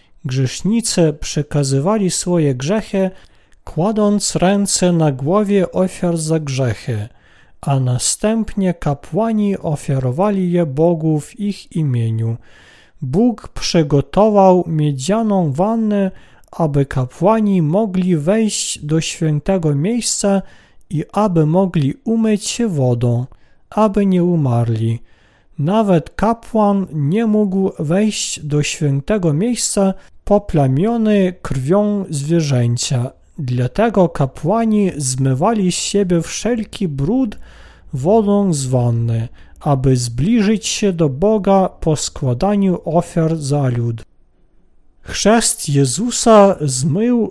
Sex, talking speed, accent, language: male, 95 wpm, native, Polish